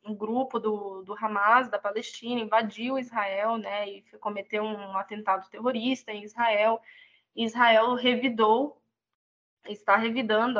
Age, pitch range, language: 10-29, 210-240 Hz, Portuguese